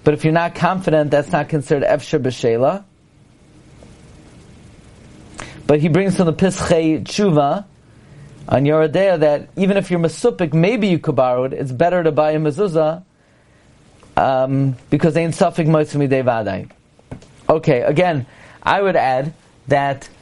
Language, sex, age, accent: English, male, 40-59, American